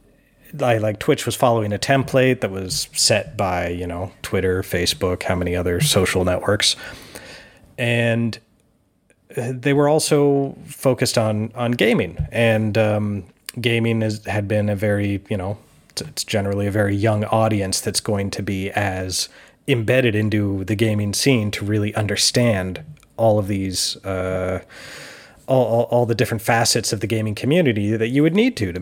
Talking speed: 160 wpm